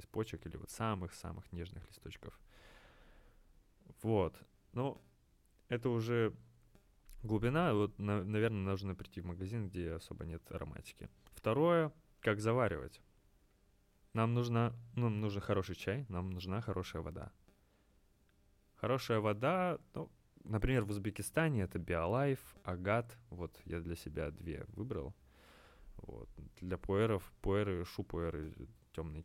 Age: 20-39